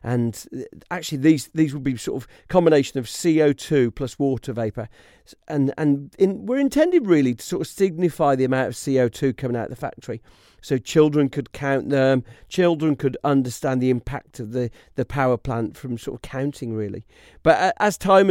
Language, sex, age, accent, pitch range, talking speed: English, male, 40-59, British, 120-150 Hz, 185 wpm